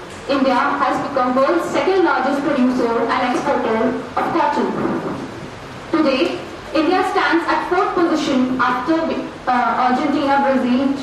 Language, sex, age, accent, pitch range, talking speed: English, female, 30-49, Indian, 260-315 Hz, 110 wpm